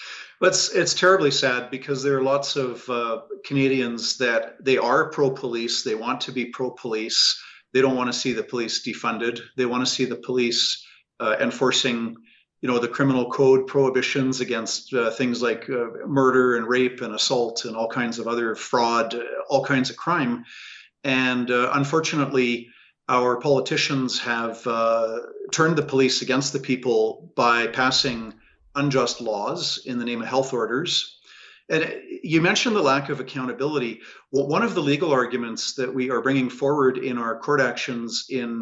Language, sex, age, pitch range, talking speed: English, male, 50-69, 120-140 Hz, 170 wpm